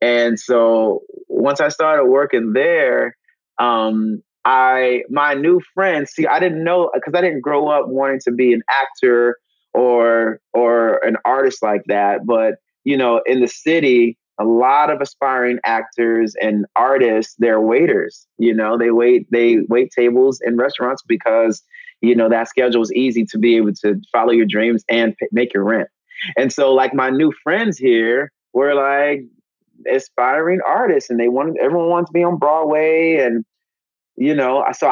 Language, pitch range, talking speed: English, 120-175 Hz, 170 wpm